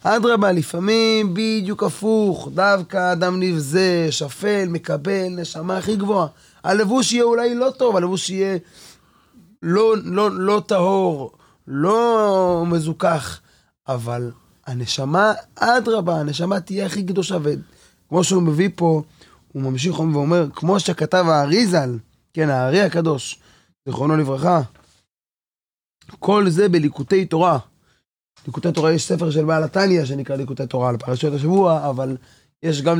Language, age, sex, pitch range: Hebrew, 20-39, male, 140-185 Hz